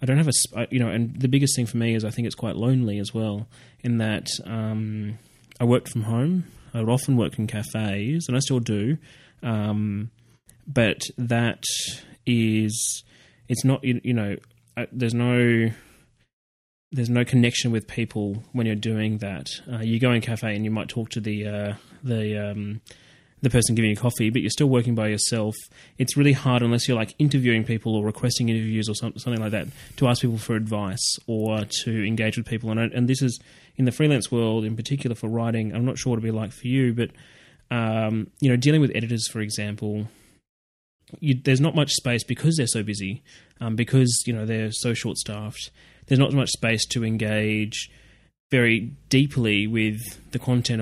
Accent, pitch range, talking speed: Australian, 110-125 Hz, 195 wpm